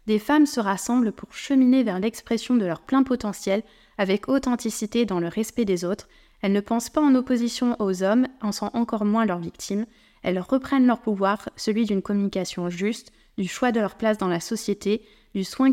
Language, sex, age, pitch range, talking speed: French, female, 20-39, 200-240 Hz, 195 wpm